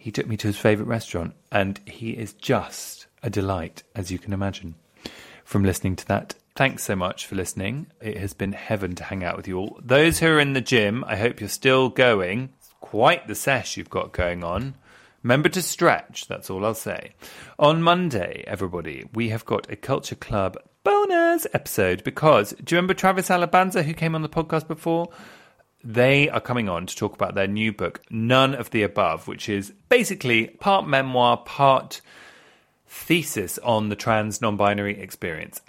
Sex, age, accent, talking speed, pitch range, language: male, 30-49, British, 185 wpm, 95-135 Hz, English